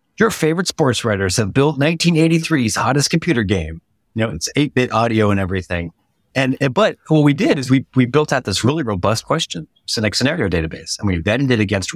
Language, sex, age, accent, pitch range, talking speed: English, male, 30-49, American, 90-115 Hz, 205 wpm